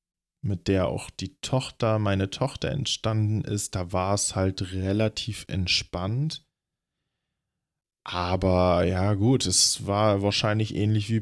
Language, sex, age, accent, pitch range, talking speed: German, male, 20-39, German, 95-105 Hz, 125 wpm